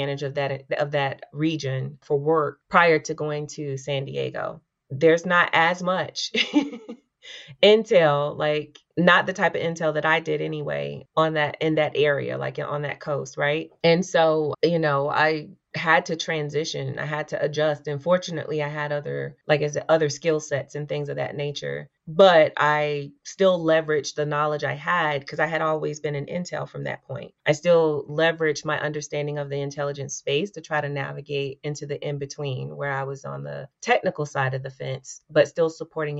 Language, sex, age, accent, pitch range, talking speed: English, female, 30-49, American, 140-155 Hz, 185 wpm